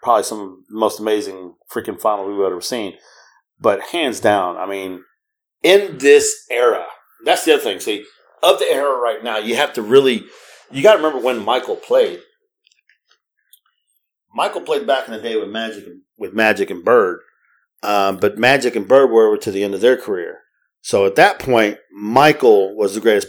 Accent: American